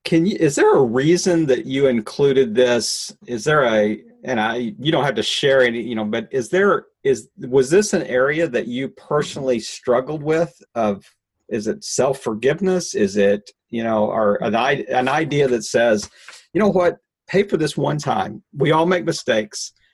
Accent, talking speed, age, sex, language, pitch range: American, 185 wpm, 40-59, male, English, 105-150 Hz